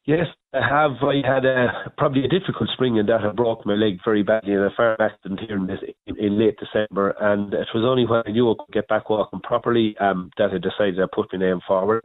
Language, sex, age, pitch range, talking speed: English, male, 40-59, 95-115 Hz, 250 wpm